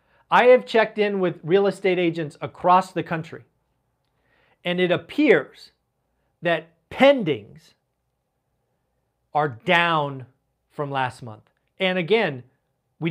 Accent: American